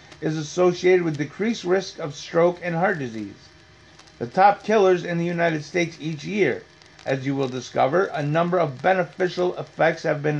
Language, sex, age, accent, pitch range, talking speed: English, male, 30-49, American, 155-235 Hz, 175 wpm